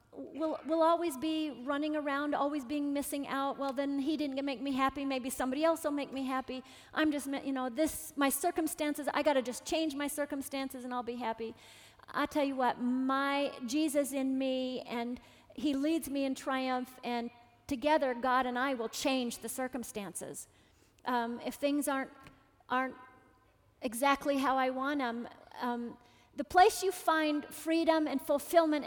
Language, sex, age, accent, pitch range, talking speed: English, female, 40-59, American, 255-315 Hz, 175 wpm